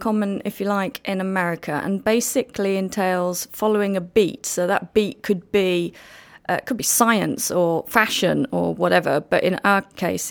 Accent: British